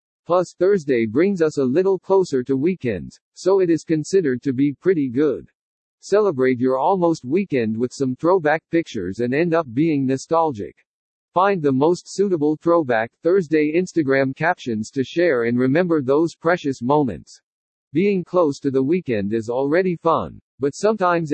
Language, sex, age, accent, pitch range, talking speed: English, male, 50-69, American, 135-175 Hz, 155 wpm